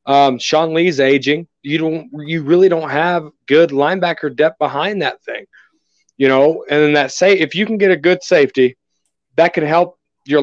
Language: English